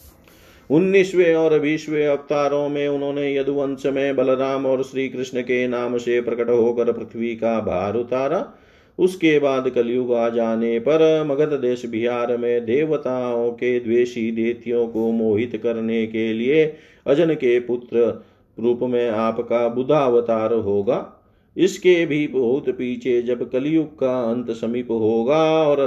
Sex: male